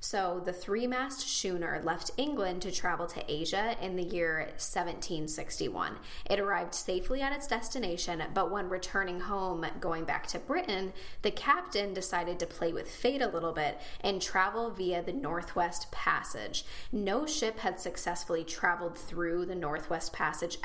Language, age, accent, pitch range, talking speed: English, 10-29, American, 175-215 Hz, 155 wpm